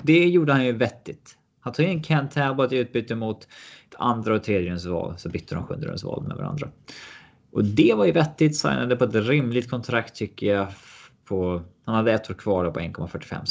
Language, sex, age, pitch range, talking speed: Swedish, male, 20-39, 90-125 Hz, 205 wpm